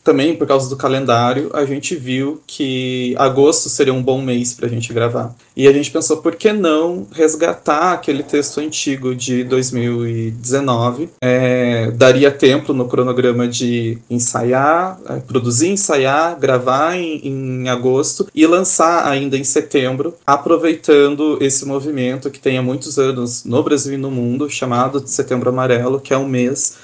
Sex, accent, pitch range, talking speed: male, Brazilian, 125-150 Hz, 155 wpm